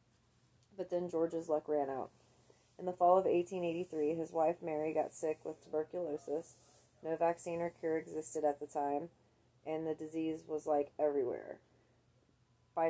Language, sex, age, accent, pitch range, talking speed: English, female, 30-49, American, 150-170 Hz, 155 wpm